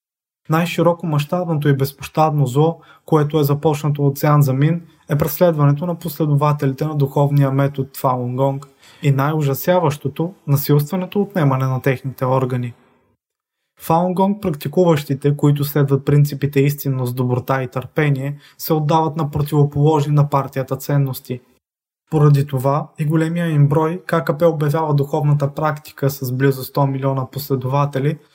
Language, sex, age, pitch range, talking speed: Bulgarian, male, 20-39, 135-155 Hz, 120 wpm